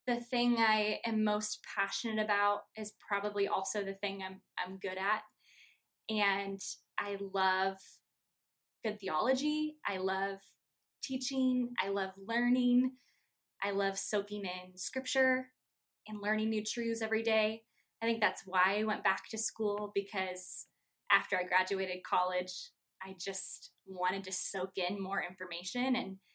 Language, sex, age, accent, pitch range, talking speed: English, female, 10-29, American, 190-230 Hz, 140 wpm